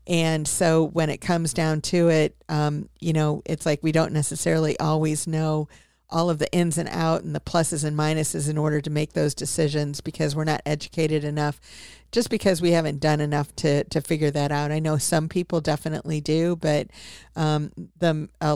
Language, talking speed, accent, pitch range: English, 195 wpm, American, 150-170 Hz